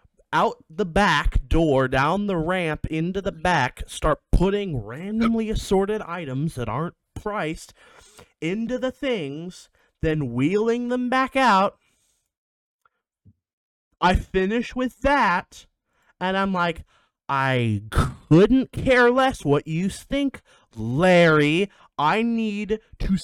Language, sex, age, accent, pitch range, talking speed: English, male, 30-49, American, 135-195 Hz, 115 wpm